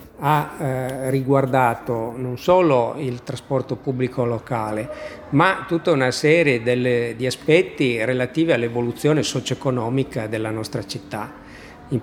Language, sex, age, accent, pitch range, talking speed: Italian, male, 50-69, native, 120-140 Hz, 110 wpm